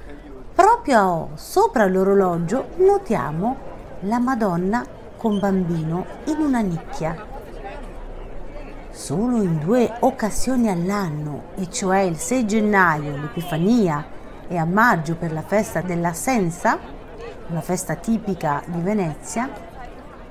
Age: 40-59